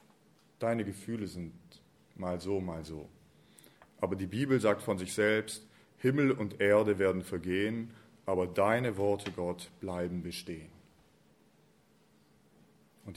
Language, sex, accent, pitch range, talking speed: German, male, German, 95-105 Hz, 120 wpm